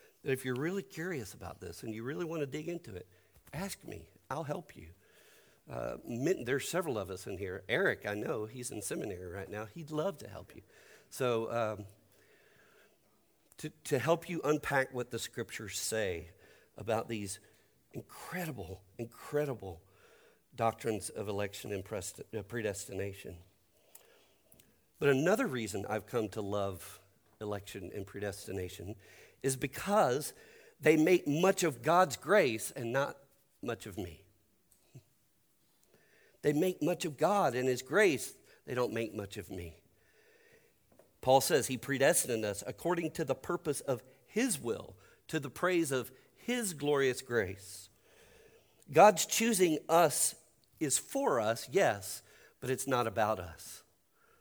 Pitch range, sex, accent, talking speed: 105-160 Hz, male, American, 140 wpm